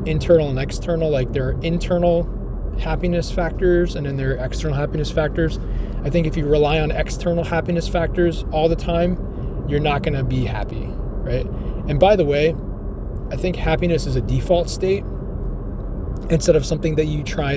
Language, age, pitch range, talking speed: English, 20-39, 125-165 Hz, 180 wpm